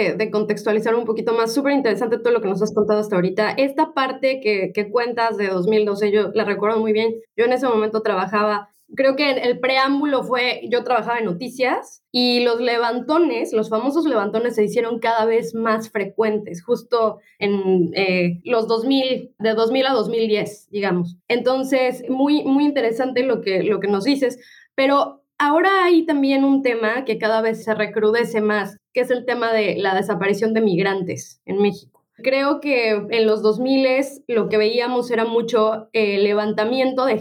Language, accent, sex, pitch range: Spanish, Mexican, female, 210-260 Hz